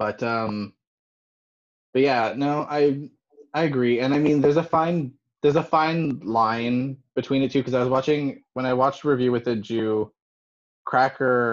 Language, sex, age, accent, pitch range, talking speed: English, male, 20-39, American, 115-135 Hz, 170 wpm